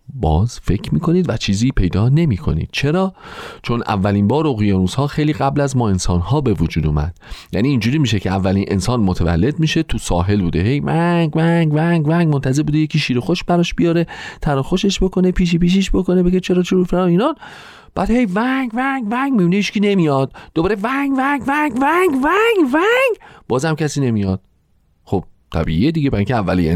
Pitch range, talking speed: 110-180 Hz, 180 wpm